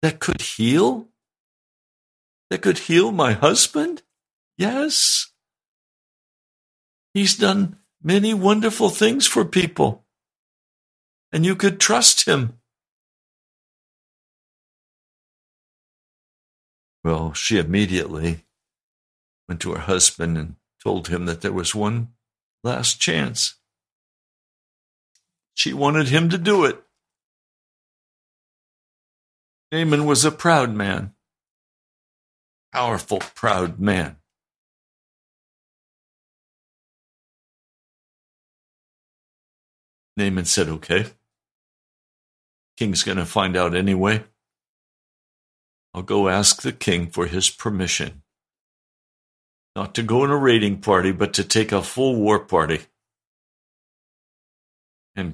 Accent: American